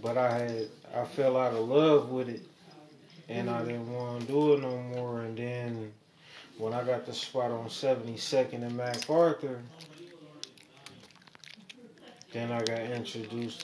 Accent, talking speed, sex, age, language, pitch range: American, 150 wpm, male, 20-39, English, 115-145 Hz